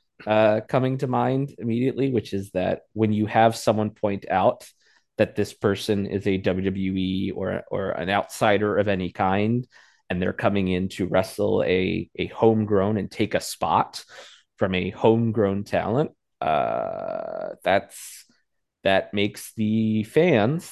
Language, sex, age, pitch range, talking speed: English, male, 30-49, 95-125 Hz, 145 wpm